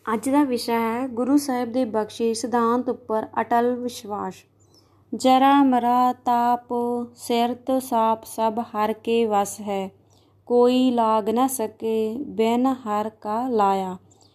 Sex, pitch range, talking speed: female, 225-250 Hz, 125 wpm